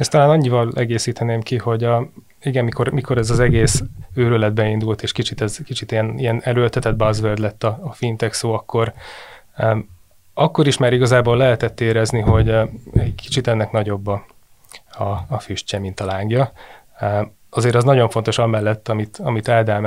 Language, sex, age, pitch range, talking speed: Hungarian, male, 20-39, 110-120 Hz, 170 wpm